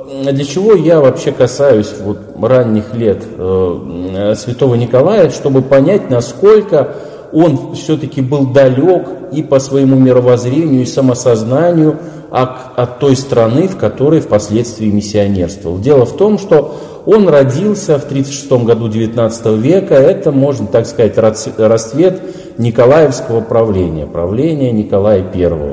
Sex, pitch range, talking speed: male, 110-140 Hz, 120 wpm